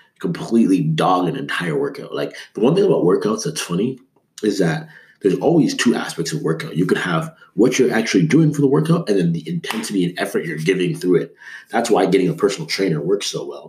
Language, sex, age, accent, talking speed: English, male, 30-49, American, 220 wpm